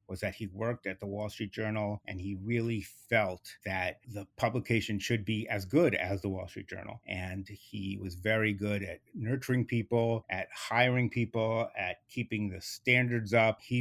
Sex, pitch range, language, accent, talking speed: male, 100-120 Hz, English, American, 180 wpm